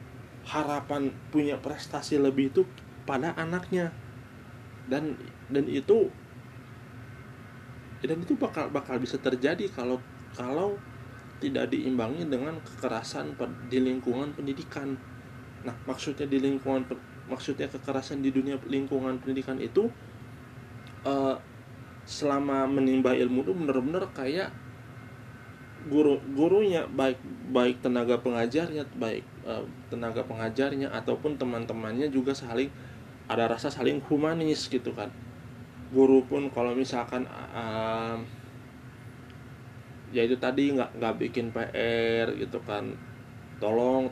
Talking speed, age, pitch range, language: 105 wpm, 20-39, 120-135 Hz, Indonesian